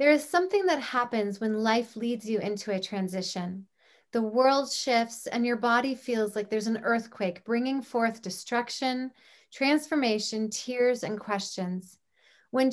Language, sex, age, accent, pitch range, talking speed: English, female, 30-49, American, 210-260 Hz, 145 wpm